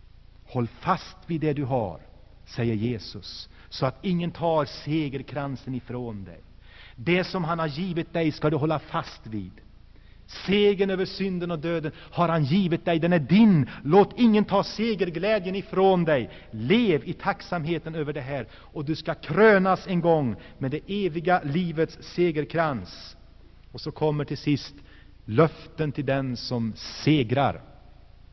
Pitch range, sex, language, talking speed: 120-190 Hz, male, Swedish, 150 wpm